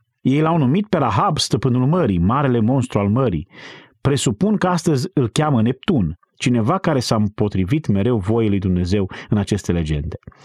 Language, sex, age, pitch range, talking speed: Romanian, male, 30-49, 105-140 Hz, 160 wpm